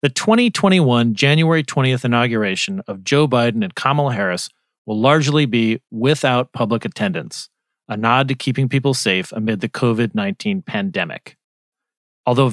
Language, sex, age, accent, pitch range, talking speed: English, male, 40-59, American, 115-145 Hz, 140 wpm